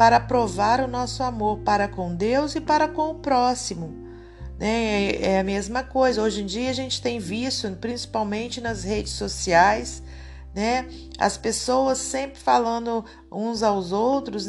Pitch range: 180-235 Hz